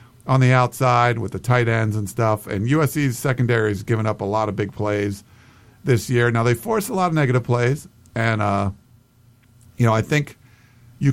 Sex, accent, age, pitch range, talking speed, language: male, American, 50-69, 110-130 Hz, 200 wpm, English